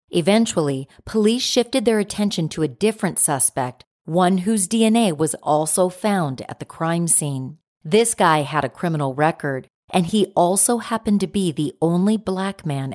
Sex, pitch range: female, 150-205 Hz